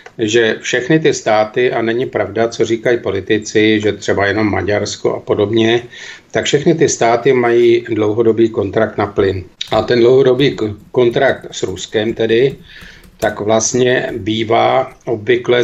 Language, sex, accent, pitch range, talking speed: Czech, male, native, 115-130 Hz, 140 wpm